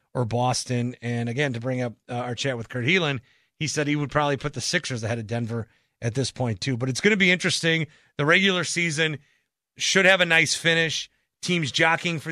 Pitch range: 125-160 Hz